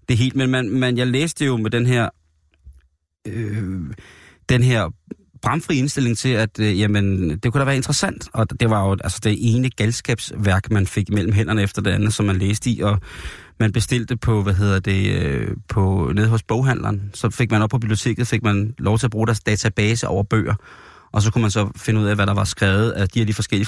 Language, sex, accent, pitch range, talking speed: Danish, male, native, 100-120 Hz, 225 wpm